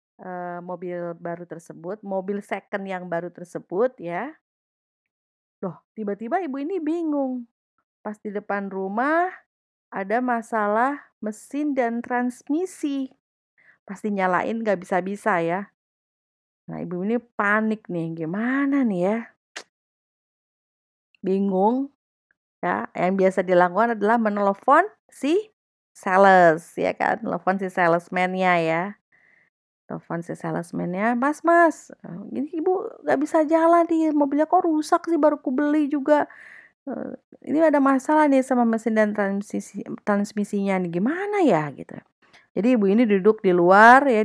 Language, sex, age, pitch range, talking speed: Indonesian, female, 30-49, 185-270 Hz, 120 wpm